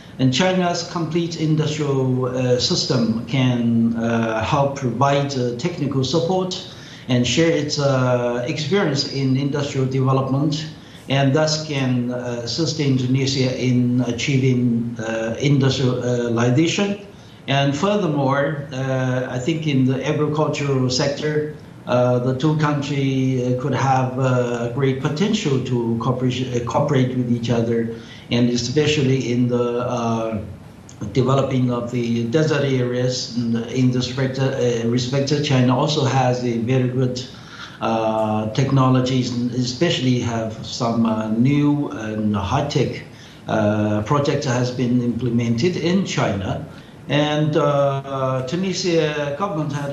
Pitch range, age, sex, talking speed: 125-145 Hz, 60-79, male, 120 wpm